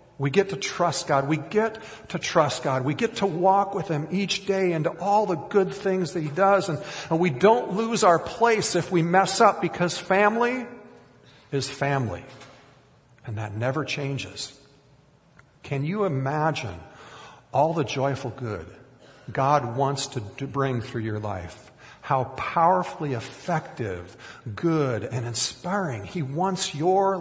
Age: 50-69